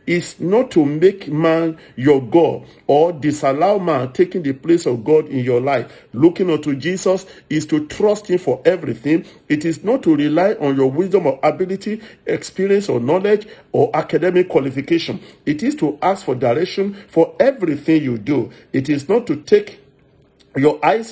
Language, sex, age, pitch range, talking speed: English, male, 50-69, 145-190 Hz, 170 wpm